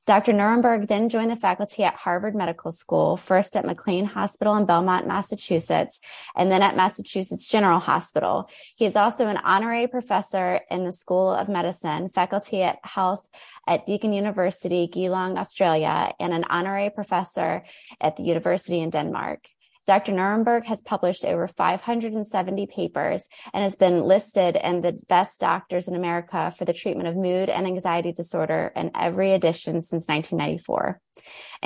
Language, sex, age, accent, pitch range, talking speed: English, female, 20-39, American, 175-200 Hz, 155 wpm